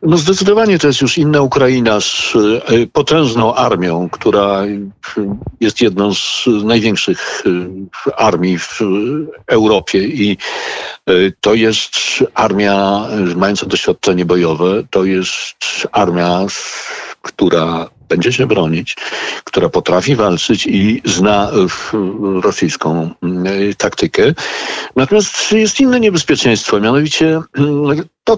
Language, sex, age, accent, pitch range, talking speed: Polish, male, 50-69, native, 100-145 Hz, 95 wpm